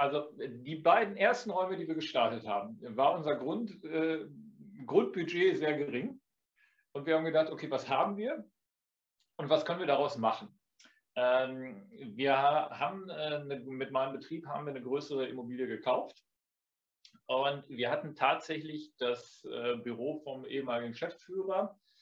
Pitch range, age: 130-165 Hz, 40-59